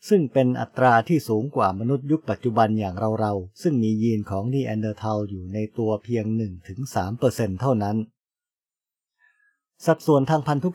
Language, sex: English, male